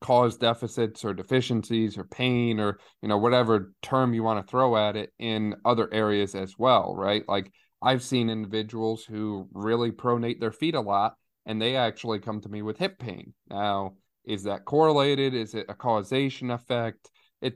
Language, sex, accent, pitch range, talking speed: English, male, American, 100-115 Hz, 180 wpm